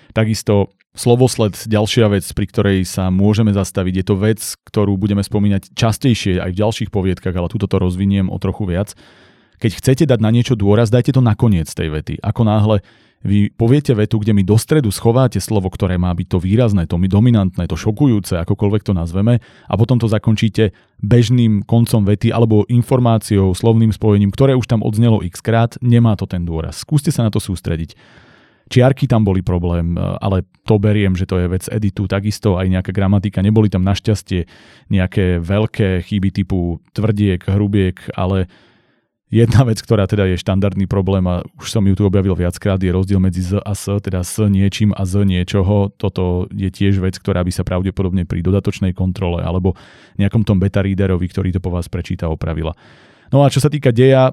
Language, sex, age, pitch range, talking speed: Slovak, male, 30-49, 95-110 Hz, 185 wpm